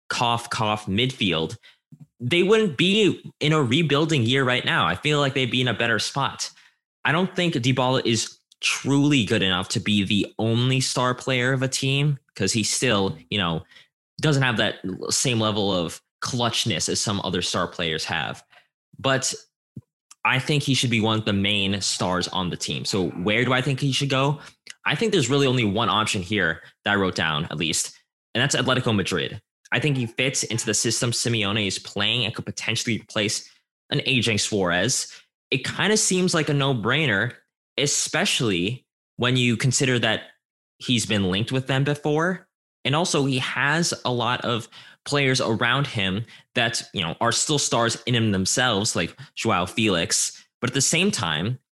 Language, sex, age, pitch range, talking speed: English, male, 20-39, 110-135 Hz, 180 wpm